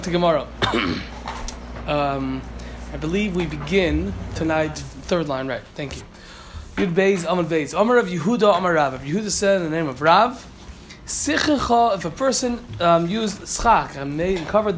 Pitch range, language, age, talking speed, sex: 150-205 Hz, Malay, 20-39, 135 wpm, male